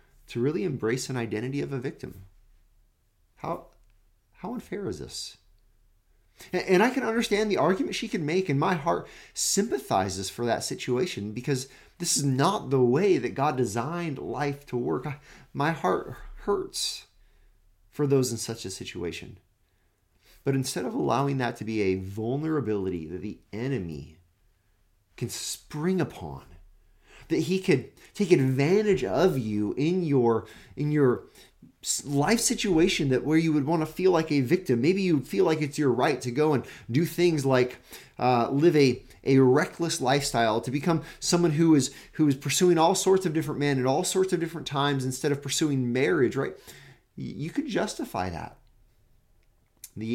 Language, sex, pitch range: English, male, 105-160 Hz